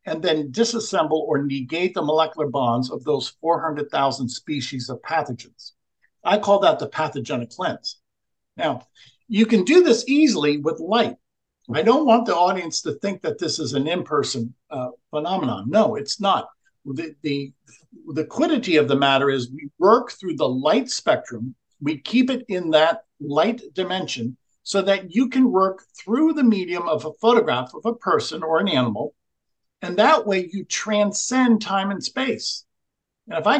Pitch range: 150-220 Hz